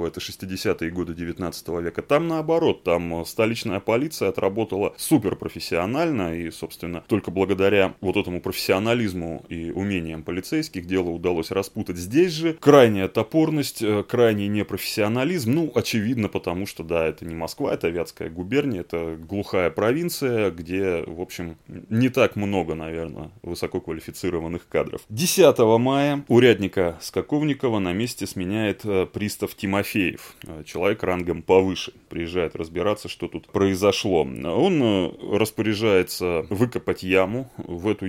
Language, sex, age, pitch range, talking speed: Russian, male, 20-39, 85-115 Hz, 120 wpm